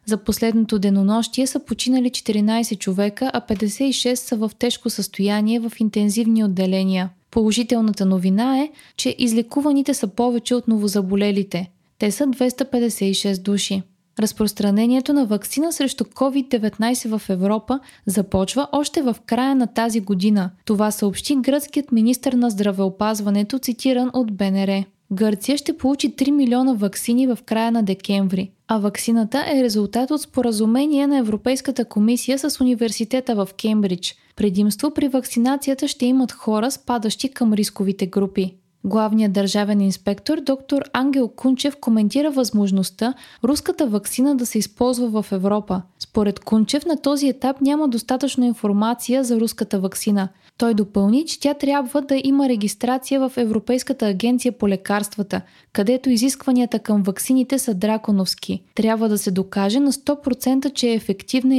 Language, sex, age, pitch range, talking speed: Bulgarian, female, 20-39, 205-260 Hz, 135 wpm